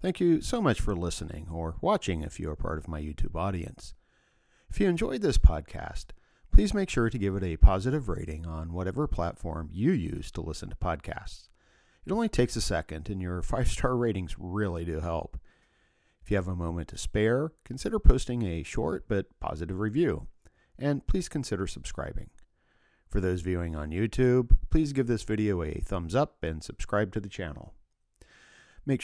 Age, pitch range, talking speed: 40-59, 80-110 Hz, 180 wpm